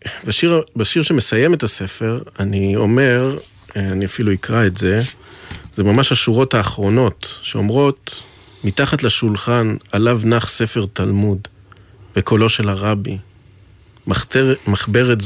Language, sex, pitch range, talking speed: Hebrew, male, 100-120 Hz, 110 wpm